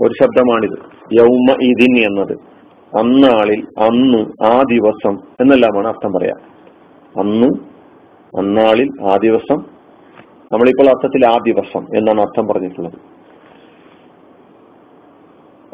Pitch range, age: 125-195 Hz, 40-59